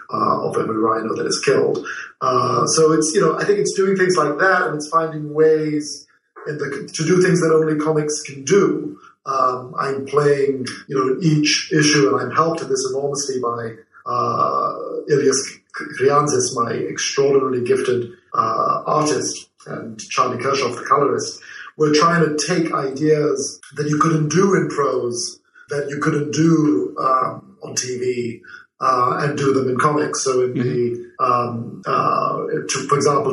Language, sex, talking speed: English, male, 160 wpm